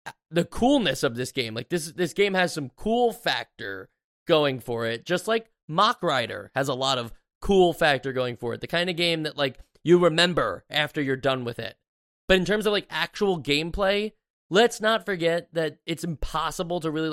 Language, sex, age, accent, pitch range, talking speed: English, male, 20-39, American, 130-170 Hz, 200 wpm